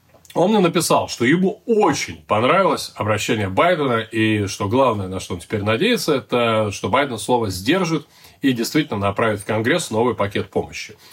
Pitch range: 105-140 Hz